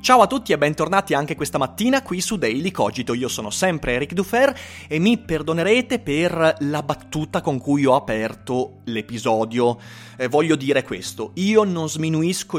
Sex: male